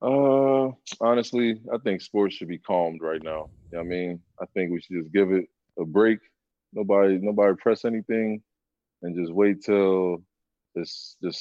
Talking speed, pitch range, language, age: 180 wpm, 85-110 Hz, English, 20-39